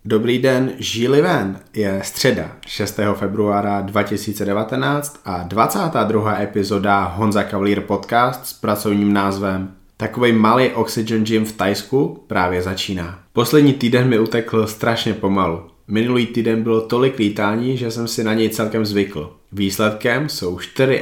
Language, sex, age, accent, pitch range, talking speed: Czech, male, 20-39, native, 100-115 Hz, 135 wpm